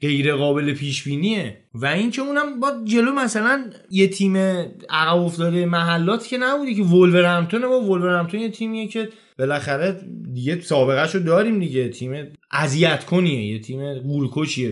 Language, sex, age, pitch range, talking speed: Persian, male, 20-39, 140-215 Hz, 140 wpm